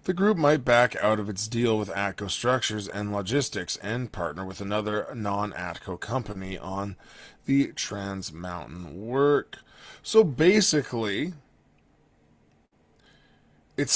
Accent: American